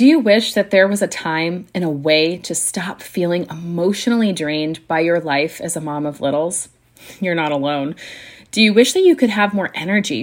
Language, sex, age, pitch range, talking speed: English, female, 30-49, 160-205 Hz, 210 wpm